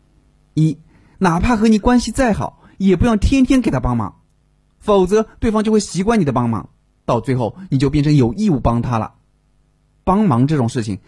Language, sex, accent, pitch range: Chinese, male, native, 125-210 Hz